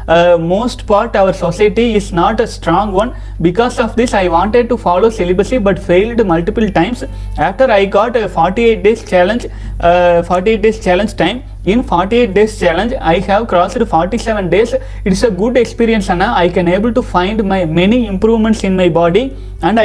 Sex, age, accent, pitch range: male, 30-49, native, 175-225 Hz